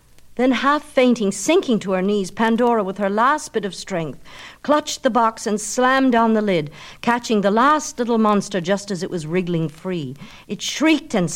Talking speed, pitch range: 190 wpm, 145-205 Hz